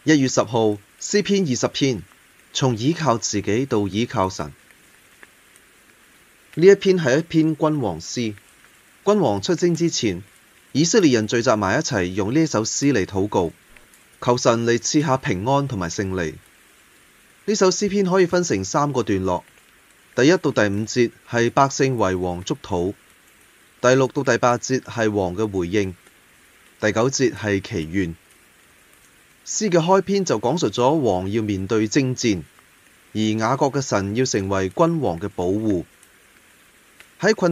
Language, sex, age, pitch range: Chinese, male, 20-39, 100-145 Hz